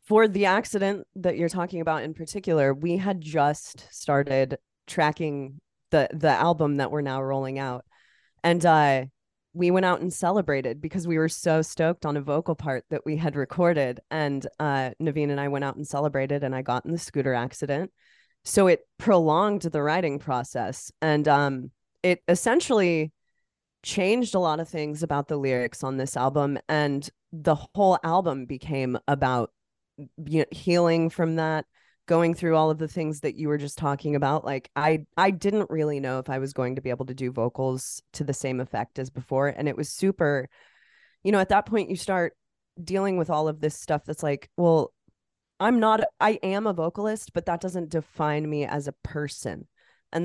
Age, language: 20-39, English